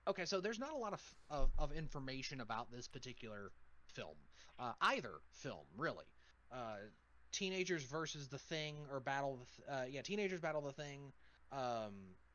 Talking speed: 160 wpm